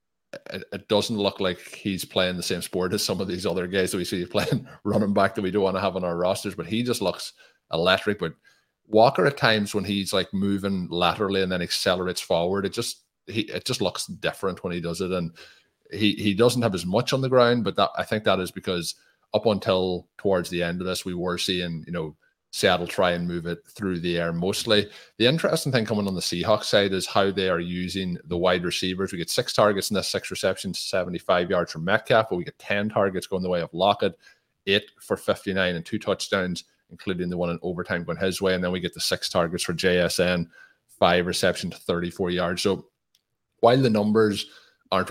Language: English